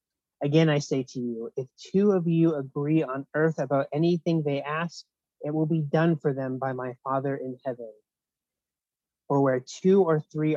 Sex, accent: male, American